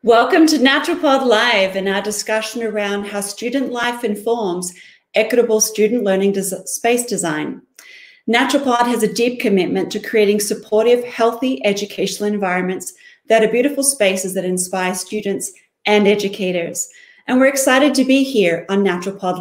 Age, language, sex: 40-59, English, female